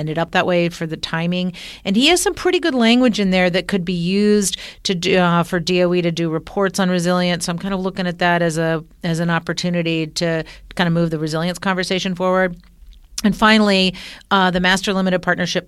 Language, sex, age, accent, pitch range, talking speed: English, female, 40-59, American, 160-190 Hz, 220 wpm